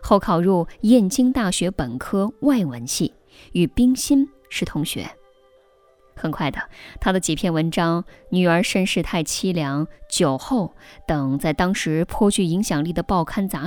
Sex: female